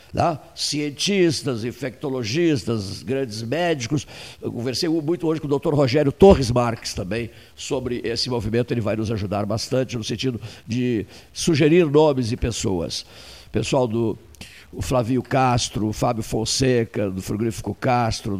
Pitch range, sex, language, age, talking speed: 110-150 Hz, male, Portuguese, 60-79, 135 wpm